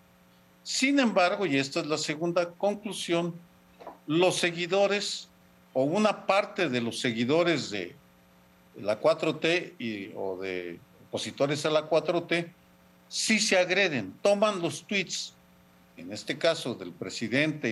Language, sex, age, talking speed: Spanish, male, 50-69, 125 wpm